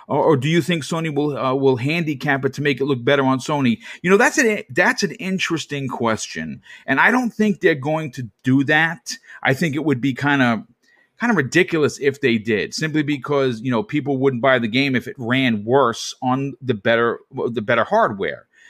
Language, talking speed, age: English, 210 wpm, 40-59